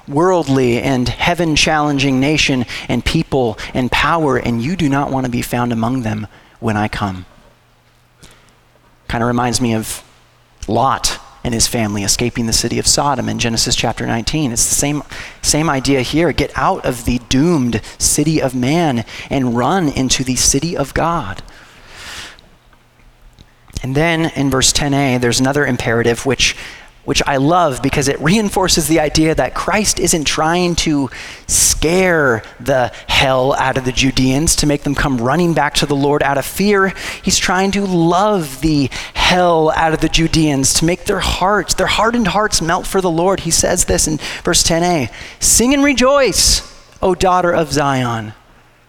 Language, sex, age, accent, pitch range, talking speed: English, male, 30-49, American, 125-165 Hz, 165 wpm